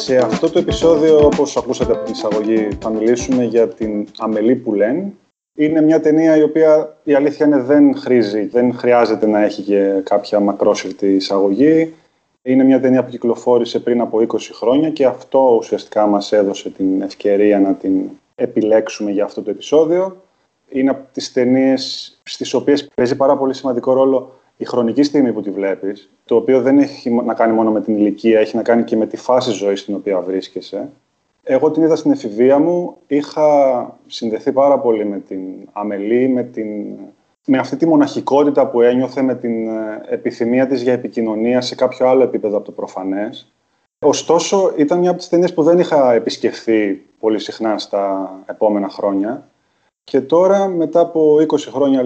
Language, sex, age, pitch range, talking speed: Greek, male, 20-39, 110-150 Hz, 170 wpm